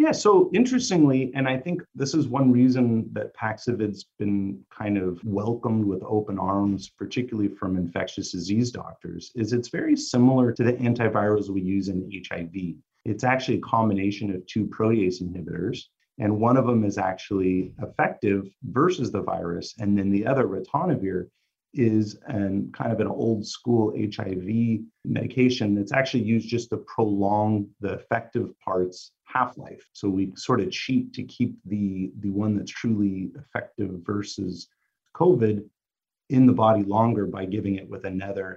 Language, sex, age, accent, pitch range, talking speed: English, male, 30-49, American, 100-120 Hz, 155 wpm